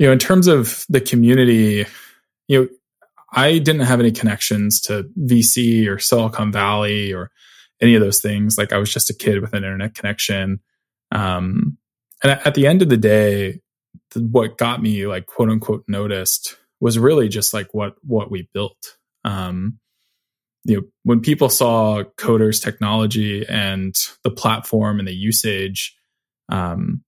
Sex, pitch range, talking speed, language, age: male, 100-120 Hz, 160 wpm, English, 20-39